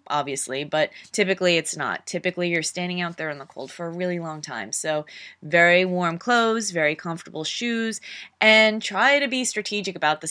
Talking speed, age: 185 wpm, 20-39